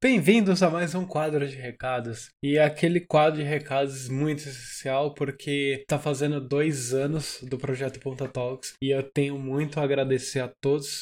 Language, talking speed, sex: Portuguese, 175 wpm, male